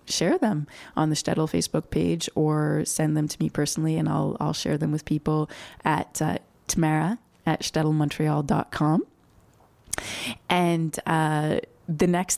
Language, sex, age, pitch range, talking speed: English, female, 20-39, 150-190 Hz, 140 wpm